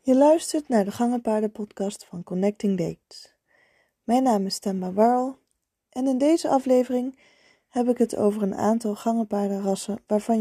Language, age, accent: Dutch, 20-39, Dutch